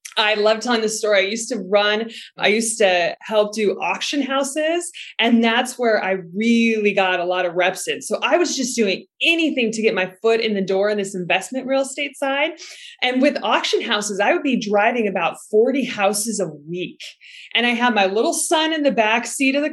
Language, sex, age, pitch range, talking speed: English, female, 20-39, 190-250 Hz, 215 wpm